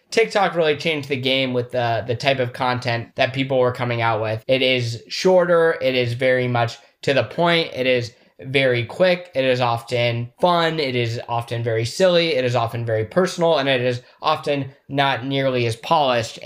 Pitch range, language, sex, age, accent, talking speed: 130-165 Hz, English, male, 20-39, American, 195 wpm